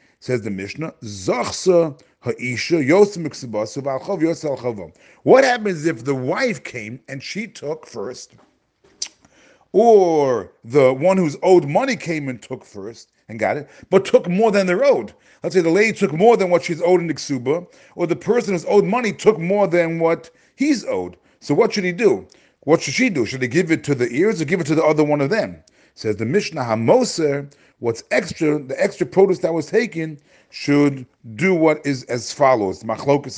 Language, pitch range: English, 135-190 Hz